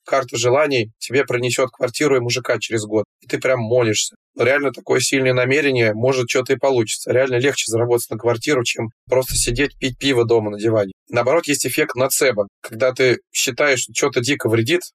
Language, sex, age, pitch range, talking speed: Russian, male, 20-39, 115-140 Hz, 180 wpm